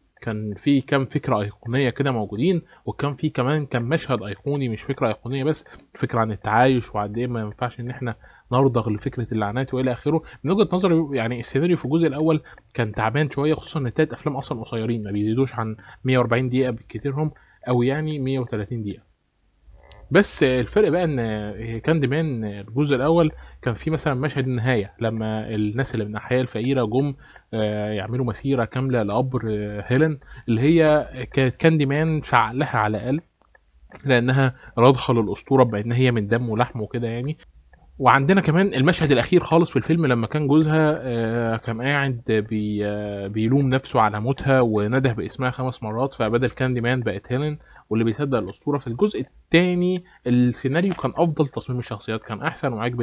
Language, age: Arabic, 20-39